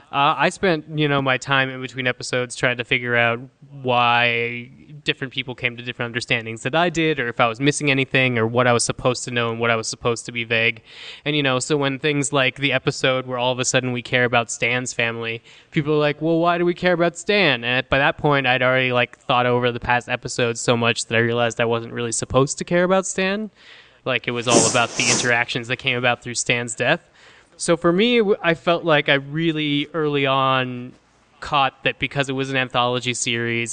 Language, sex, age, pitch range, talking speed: English, male, 20-39, 120-145 Hz, 230 wpm